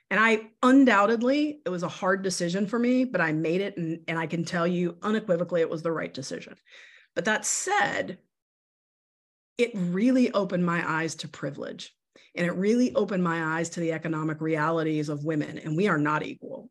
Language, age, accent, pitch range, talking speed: English, 40-59, American, 165-205 Hz, 190 wpm